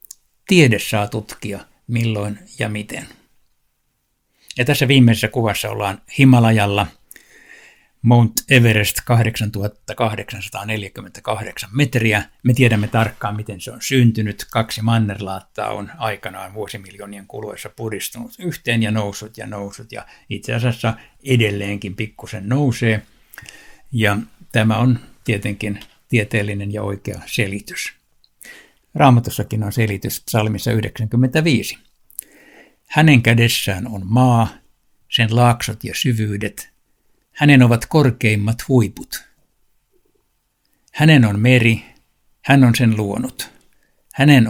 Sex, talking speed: male, 100 wpm